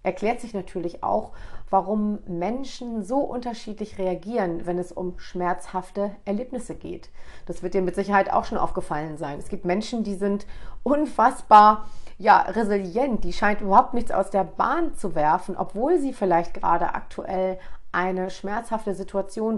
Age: 40-59